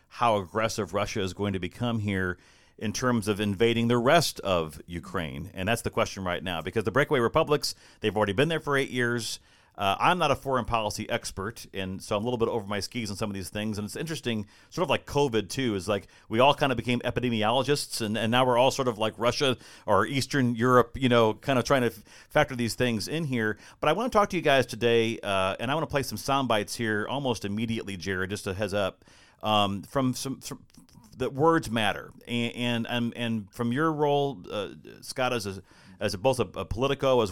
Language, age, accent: English, 40-59, American